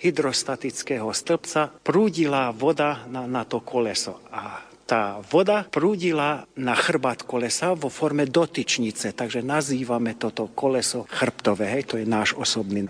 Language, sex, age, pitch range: Slovak, male, 50-69, 115-160 Hz